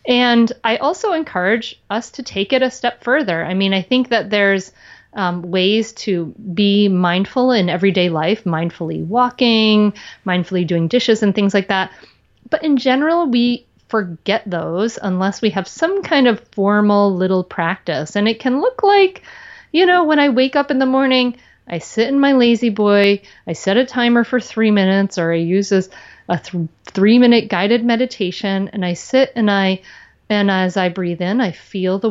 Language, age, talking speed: English, 30-49, 180 wpm